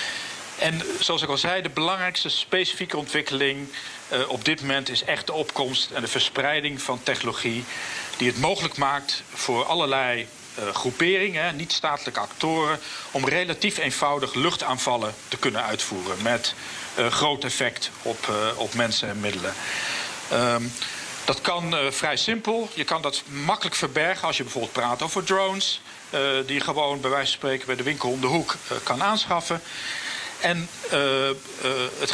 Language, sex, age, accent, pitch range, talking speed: Dutch, male, 50-69, Dutch, 125-165 Hz, 160 wpm